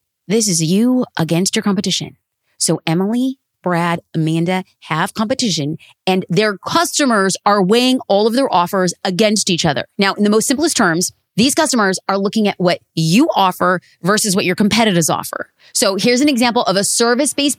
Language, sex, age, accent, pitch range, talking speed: English, female, 30-49, American, 185-240 Hz, 170 wpm